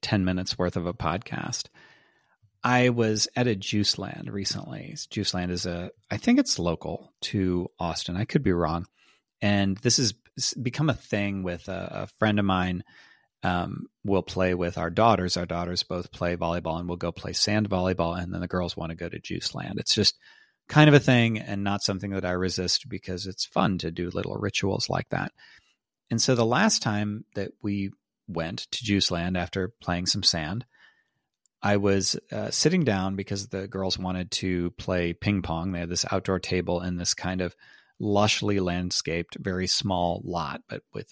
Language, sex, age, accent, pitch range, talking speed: English, male, 30-49, American, 90-115 Hz, 190 wpm